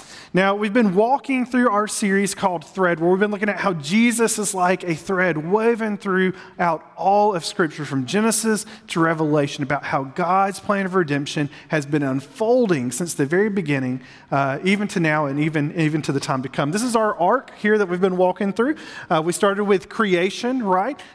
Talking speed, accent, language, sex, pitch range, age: 200 wpm, American, English, male, 155-205 Hz, 40-59